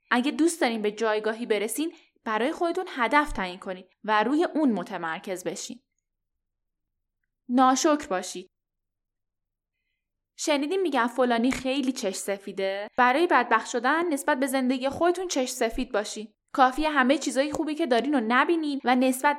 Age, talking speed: 10-29, 135 wpm